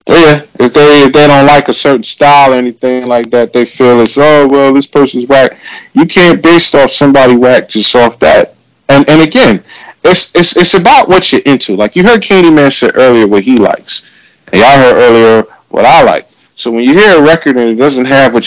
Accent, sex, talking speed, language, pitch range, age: American, male, 225 wpm, English, 120-165 Hz, 30-49